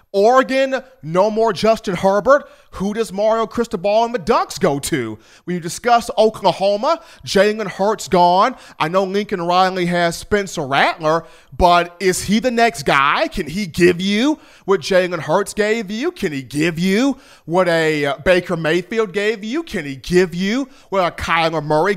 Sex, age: male, 30-49